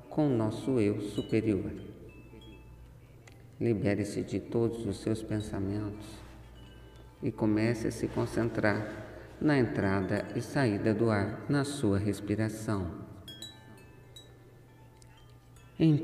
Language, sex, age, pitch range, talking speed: Portuguese, male, 50-69, 100-125 Hz, 95 wpm